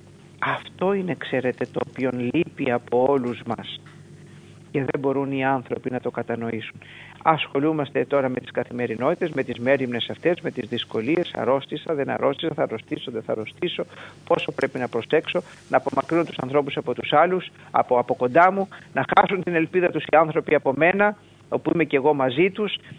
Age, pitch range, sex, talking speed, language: 50-69, 135-175 Hz, male, 175 wpm, Greek